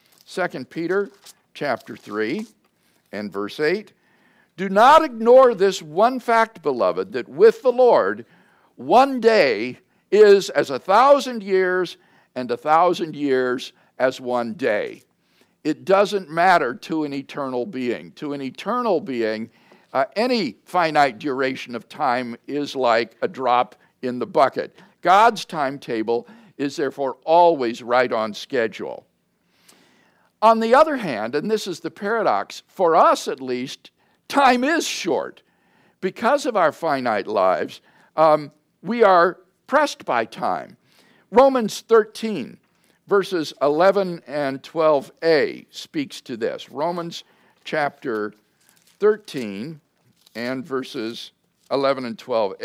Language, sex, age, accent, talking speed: English, male, 60-79, American, 120 wpm